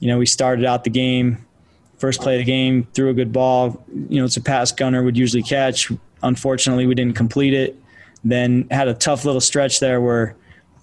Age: 20-39